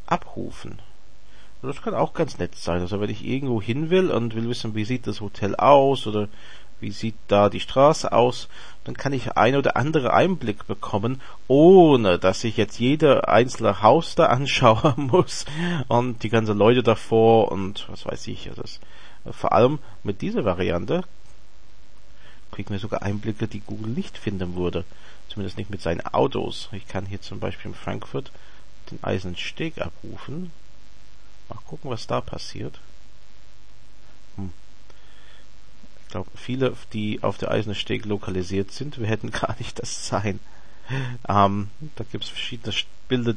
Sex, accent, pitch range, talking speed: male, Austrian, 105-120 Hz, 155 wpm